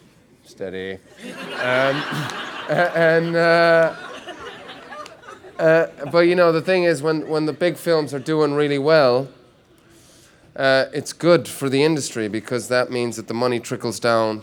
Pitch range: 100-130 Hz